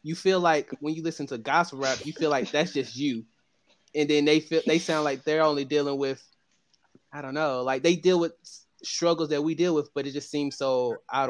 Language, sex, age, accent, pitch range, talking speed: English, male, 20-39, American, 135-155 Hz, 235 wpm